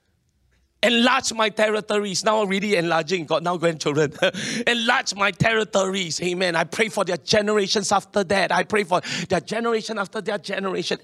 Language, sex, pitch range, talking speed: English, male, 200-245 Hz, 150 wpm